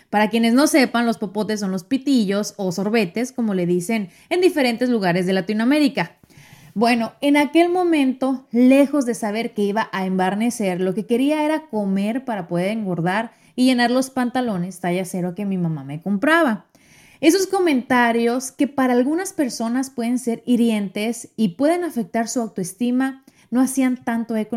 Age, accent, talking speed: 30-49, Mexican, 165 wpm